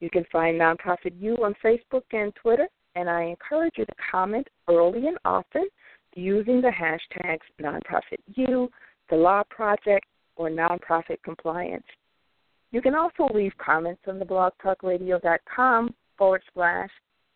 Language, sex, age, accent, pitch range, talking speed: English, female, 50-69, American, 175-240 Hz, 140 wpm